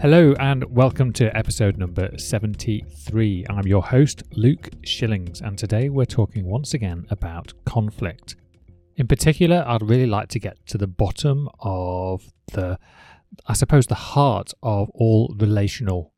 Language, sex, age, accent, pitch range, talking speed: English, male, 30-49, British, 95-130 Hz, 145 wpm